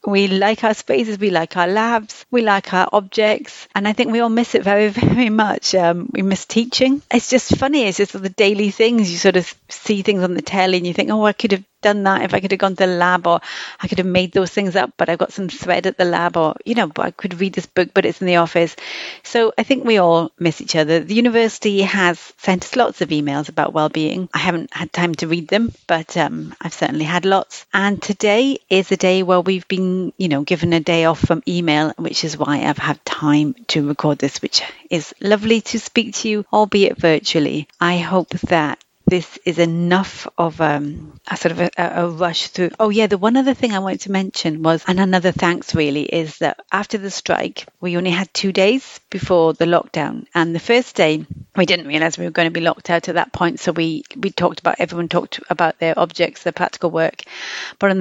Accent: British